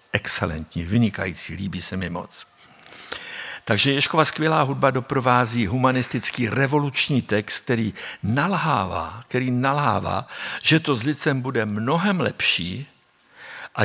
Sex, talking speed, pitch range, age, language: male, 115 wpm, 110-150 Hz, 60-79, Czech